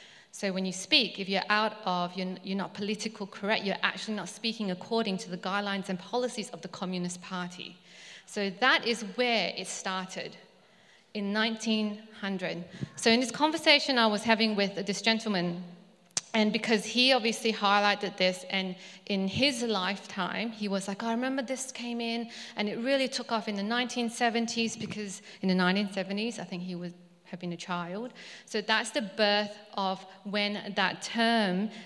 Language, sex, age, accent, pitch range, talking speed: English, female, 40-59, British, 195-230 Hz, 170 wpm